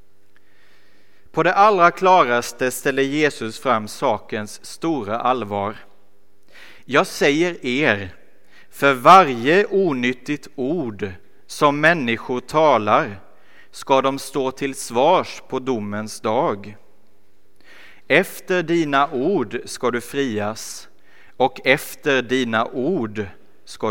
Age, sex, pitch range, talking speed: 30-49, male, 100-140 Hz, 100 wpm